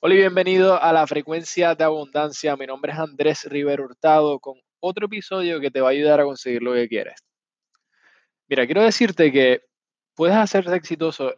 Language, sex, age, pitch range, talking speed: Spanish, male, 20-39, 130-165 Hz, 180 wpm